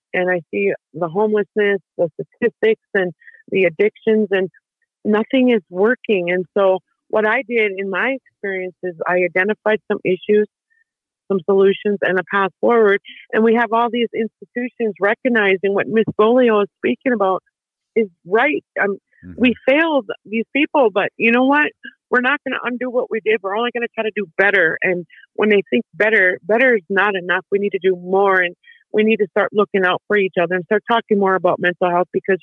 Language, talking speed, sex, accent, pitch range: English, 195 wpm, female, American, 190-230 Hz